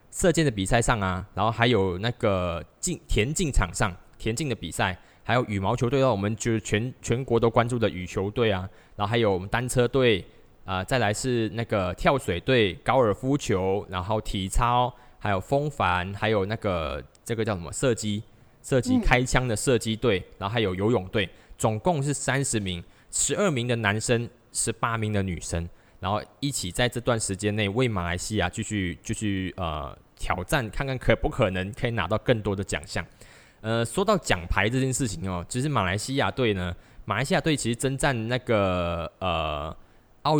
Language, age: Chinese, 20-39